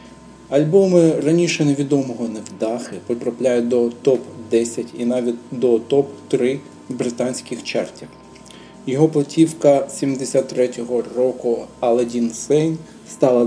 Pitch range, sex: 120-145 Hz, male